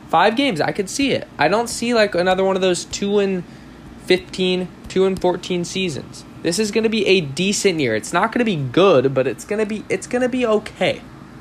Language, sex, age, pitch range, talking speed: English, male, 20-39, 145-195 Hz, 235 wpm